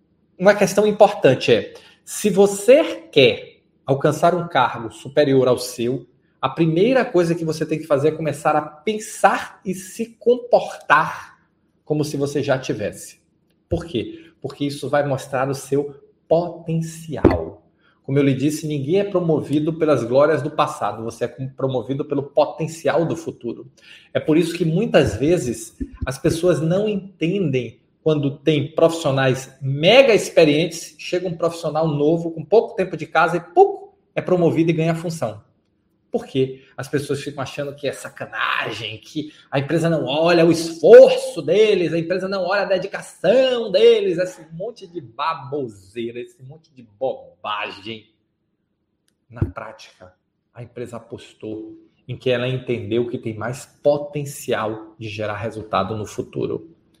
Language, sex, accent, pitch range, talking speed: Portuguese, male, Brazilian, 130-175 Hz, 150 wpm